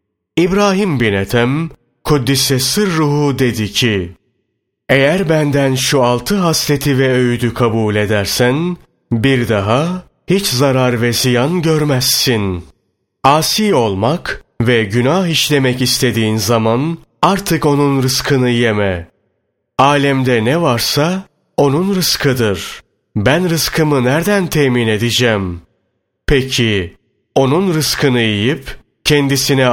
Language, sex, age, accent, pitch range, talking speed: Turkish, male, 30-49, native, 115-150 Hz, 100 wpm